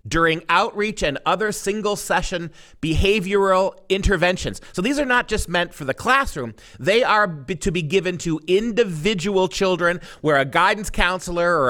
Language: English